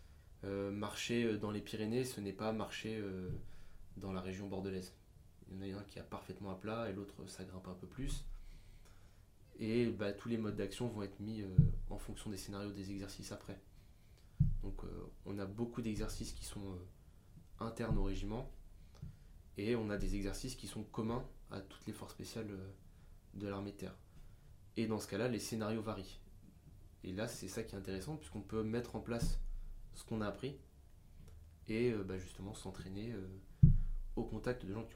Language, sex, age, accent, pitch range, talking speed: French, male, 20-39, French, 95-110 Hz, 195 wpm